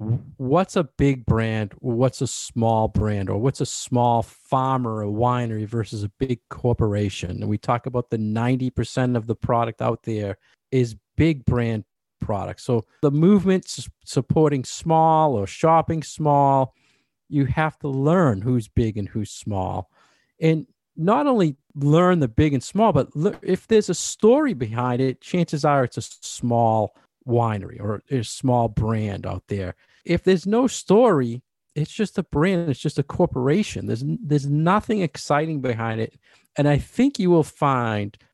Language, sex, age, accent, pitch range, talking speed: English, male, 50-69, American, 115-150 Hz, 160 wpm